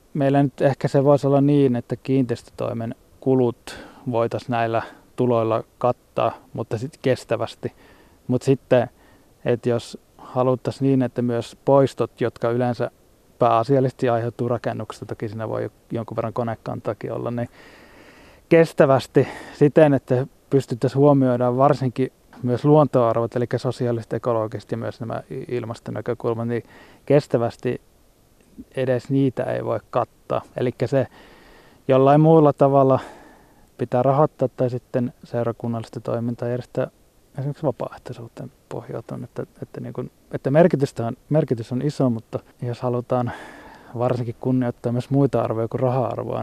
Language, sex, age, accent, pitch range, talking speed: Finnish, male, 20-39, native, 115-135 Hz, 120 wpm